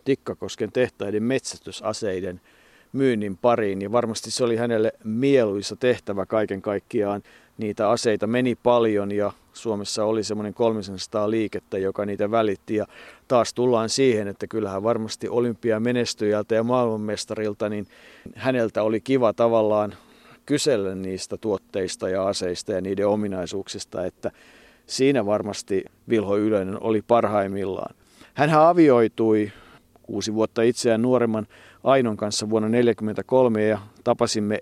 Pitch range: 105-120 Hz